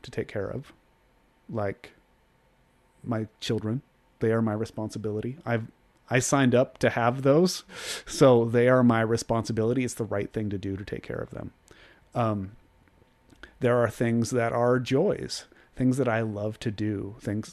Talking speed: 165 wpm